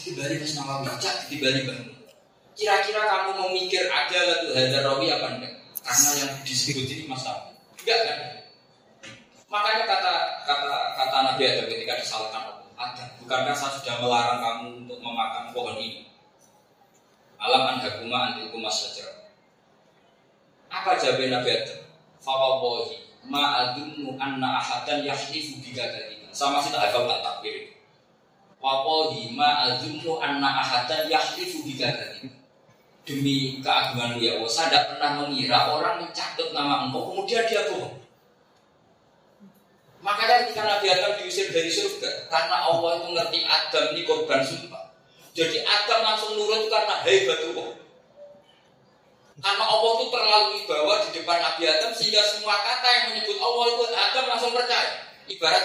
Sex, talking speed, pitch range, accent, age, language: male, 135 wpm, 135-220 Hz, native, 20-39, Indonesian